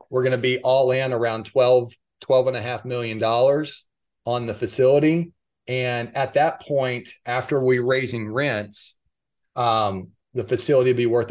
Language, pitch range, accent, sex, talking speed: English, 110-130 Hz, American, male, 165 wpm